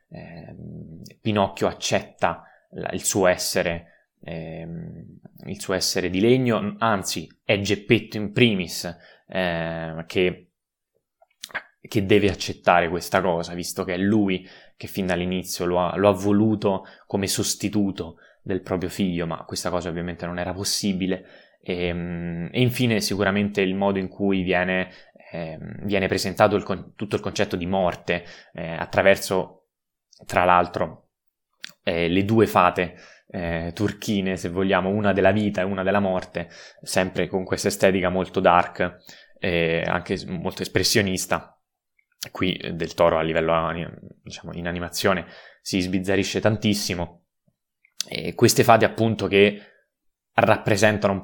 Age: 20-39